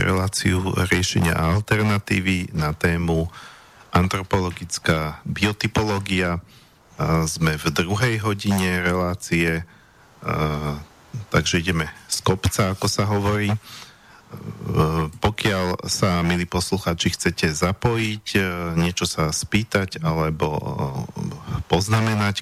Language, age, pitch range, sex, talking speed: Slovak, 40-59, 85-100 Hz, male, 80 wpm